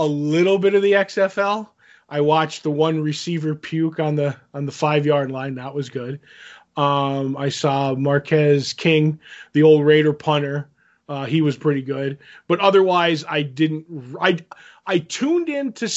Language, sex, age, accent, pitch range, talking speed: English, male, 20-39, American, 150-185 Hz, 170 wpm